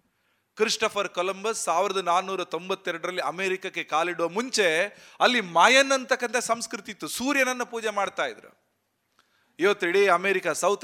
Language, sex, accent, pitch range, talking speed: Kannada, male, native, 180-215 Hz, 115 wpm